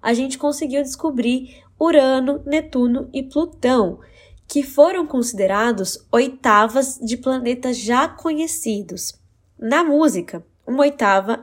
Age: 10-29